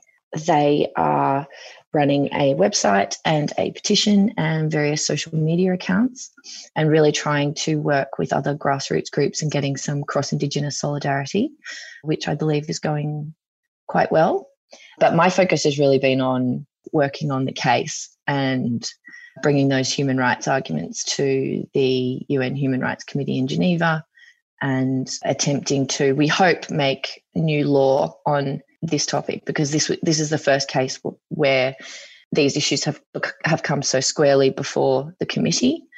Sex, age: female, 20-39